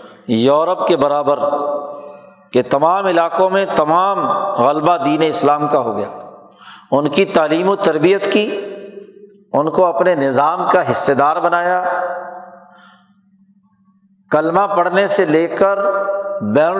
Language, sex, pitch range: Urdu, male, 160-195 Hz